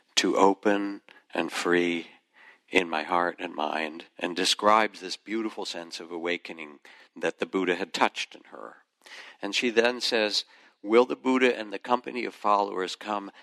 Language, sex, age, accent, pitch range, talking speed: English, male, 60-79, American, 85-110 Hz, 160 wpm